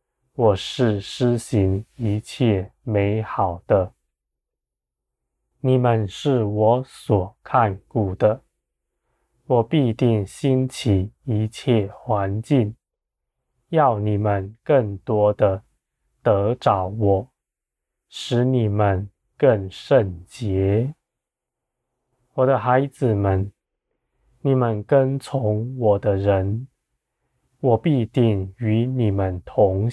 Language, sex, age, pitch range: Chinese, male, 20-39, 100-125 Hz